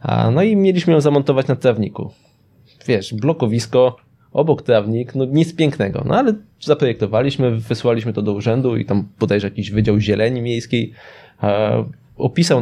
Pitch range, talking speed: 115-145 Hz, 140 wpm